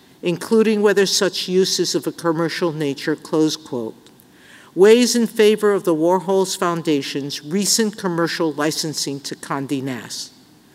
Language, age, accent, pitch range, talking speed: English, 50-69, American, 150-195 Hz, 135 wpm